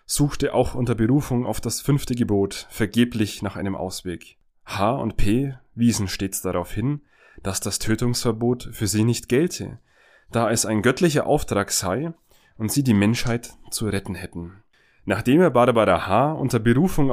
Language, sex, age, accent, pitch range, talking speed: German, male, 30-49, German, 105-130 Hz, 160 wpm